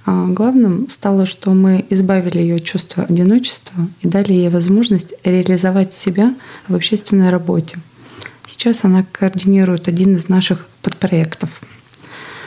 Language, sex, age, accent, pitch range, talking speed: Russian, female, 20-39, native, 175-195 Hz, 120 wpm